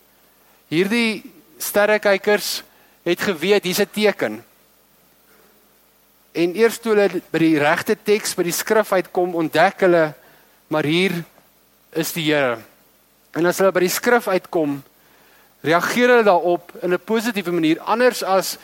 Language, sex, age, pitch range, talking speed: English, male, 50-69, 160-225 Hz, 140 wpm